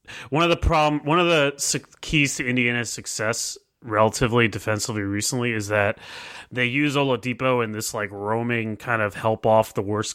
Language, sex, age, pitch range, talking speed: English, male, 30-49, 110-130 Hz, 170 wpm